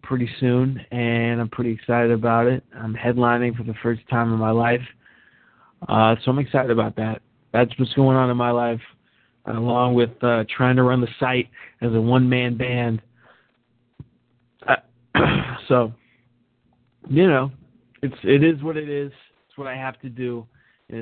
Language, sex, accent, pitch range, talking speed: English, male, American, 115-130 Hz, 175 wpm